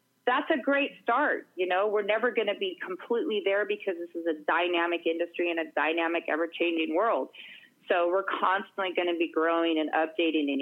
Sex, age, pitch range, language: female, 30-49, 160-220 Hz, English